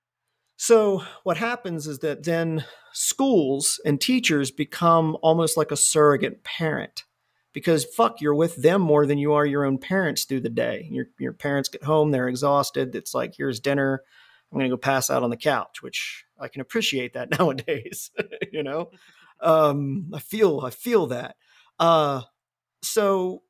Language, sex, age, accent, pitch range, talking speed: English, male, 40-59, American, 140-185 Hz, 170 wpm